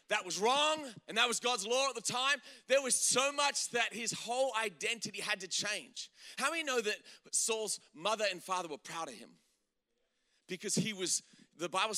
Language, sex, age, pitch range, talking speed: English, male, 30-49, 190-245 Hz, 195 wpm